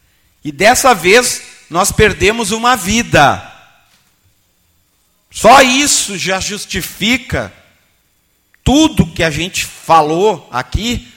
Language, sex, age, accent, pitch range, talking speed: Portuguese, male, 50-69, Brazilian, 140-210 Hz, 90 wpm